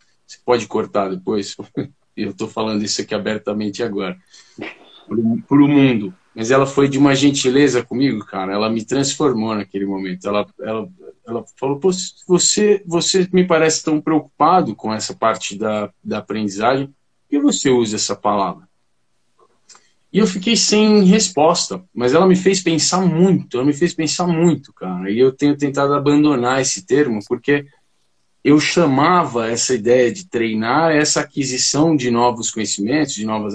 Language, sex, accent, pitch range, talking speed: Portuguese, male, Brazilian, 105-155 Hz, 155 wpm